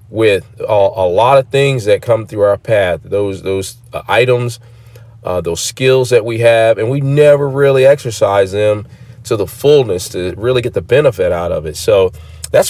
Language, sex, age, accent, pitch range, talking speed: English, male, 40-59, American, 100-140 Hz, 180 wpm